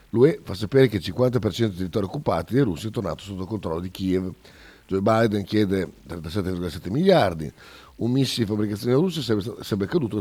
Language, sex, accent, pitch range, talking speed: Italian, male, native, 90-110 Hz, 175 wpm